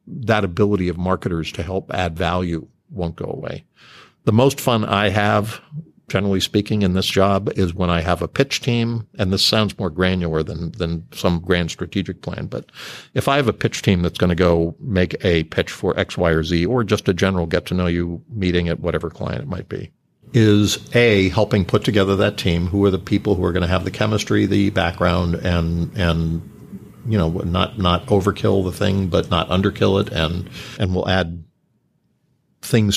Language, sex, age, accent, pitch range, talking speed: English, male, 50-69, American, 90-105 Hz, 205 wpm